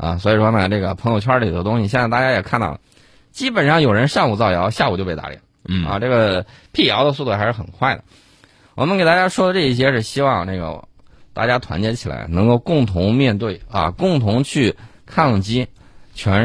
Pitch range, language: 95-130 Hz, Chinese